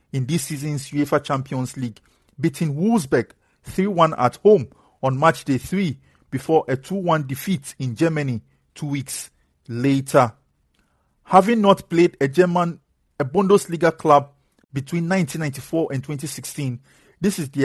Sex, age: male, 50-69